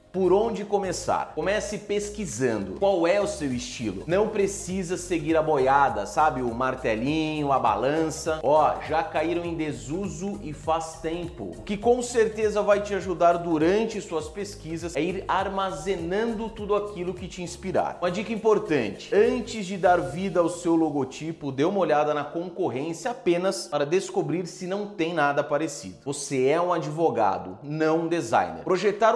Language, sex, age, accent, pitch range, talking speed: Portuguese, male, 30-49, Brazilian, 150-200 Hz, 160 wpm